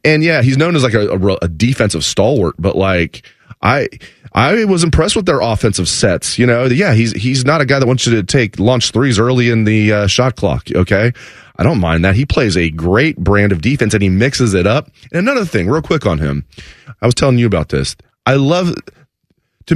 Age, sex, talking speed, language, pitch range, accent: 30-49, male, 230 wpm, English, 95-135 Hz, American